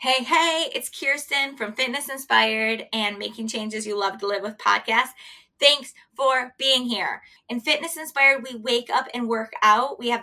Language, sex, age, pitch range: English, female, 20-39, 235-290 Hz